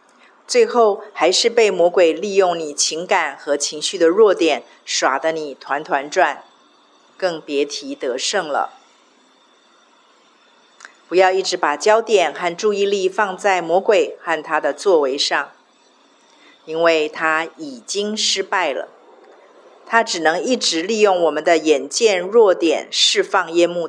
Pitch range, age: 160-230 Hz, 50-69